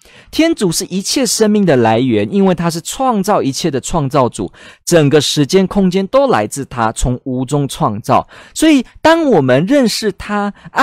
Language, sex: Chinese, male